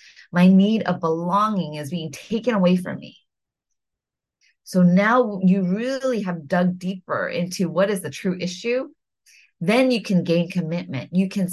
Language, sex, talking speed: English, female, 155 wpm